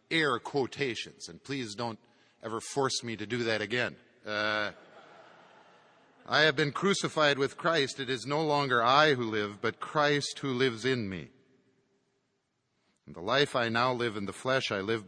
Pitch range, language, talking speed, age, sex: 110-145 Hz, English, 165 wpm, 50-69, male